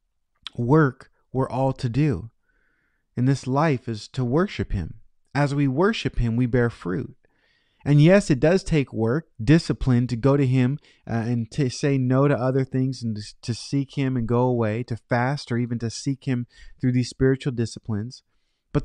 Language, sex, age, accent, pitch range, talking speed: English, male, 30-49, American, 115-150 Hz, 180 wpm